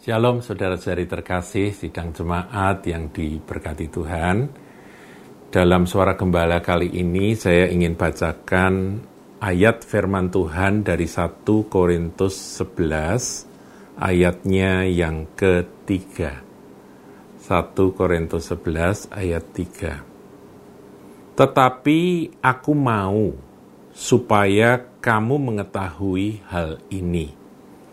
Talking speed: 85 wpm